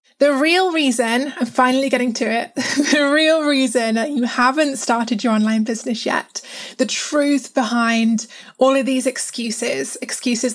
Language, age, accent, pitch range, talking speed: English, 20-39, British, 230-275 Hz, 155 wpm